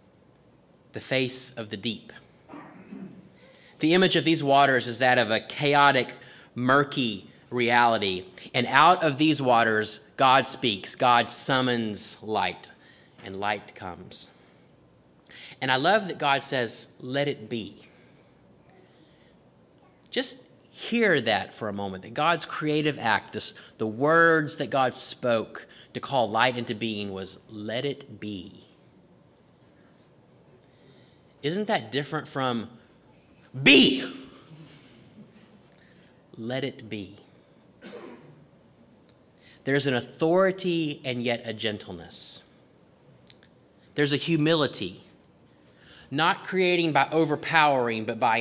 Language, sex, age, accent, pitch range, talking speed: English, male, 30-49, American, 110-150 Hz, 110 wpm